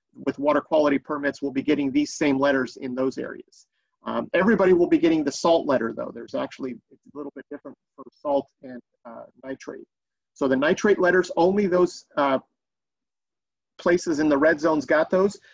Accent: American